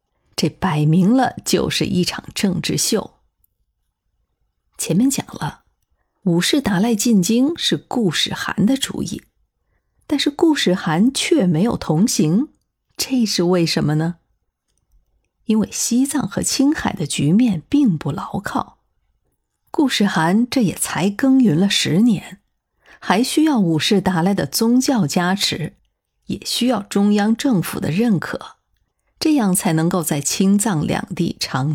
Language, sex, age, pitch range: Chinese, female, 50-69, 165-240 Hz